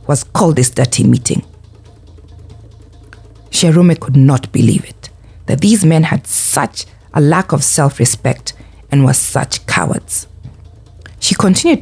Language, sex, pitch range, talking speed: English, female, 105-160 Hz, 125 wpm